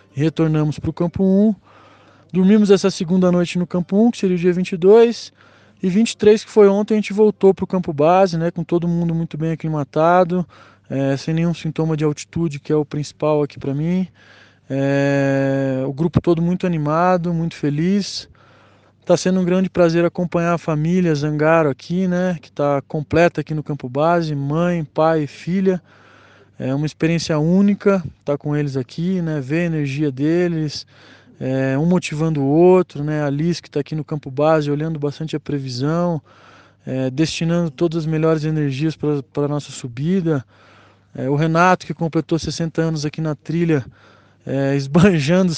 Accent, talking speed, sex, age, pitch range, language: Brazilian, 170 wpm, male, 20-39, 140-175 Hz, Portuguese